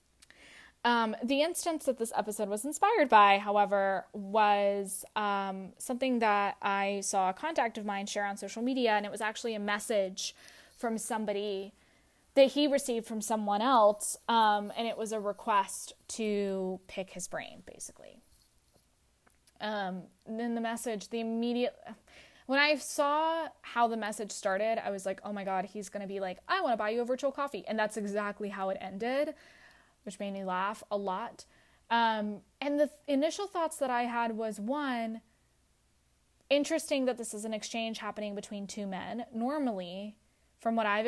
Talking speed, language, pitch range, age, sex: 170 wpm, English, 200-250 Hz, 10-29, female